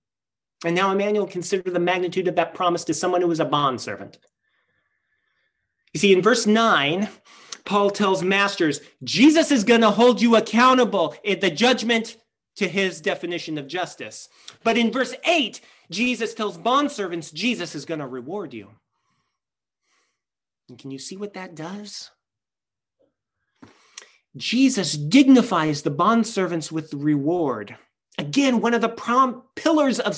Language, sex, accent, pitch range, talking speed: English, male, American, 200-260 Hz, 140 wpm